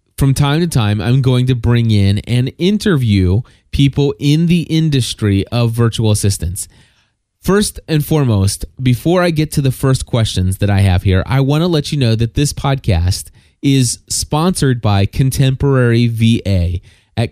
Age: 30-49